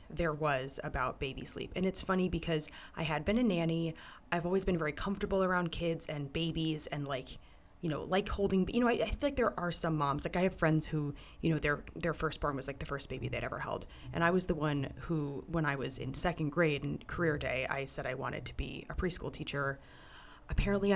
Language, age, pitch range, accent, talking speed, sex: English, 20-39, 150-180 Hz, American, 230 wpm, female